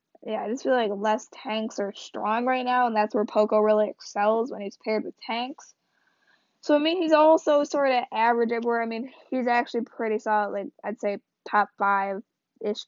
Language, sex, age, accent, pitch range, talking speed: English, female, 10-29, American, 215-260 Hz, 190 wpm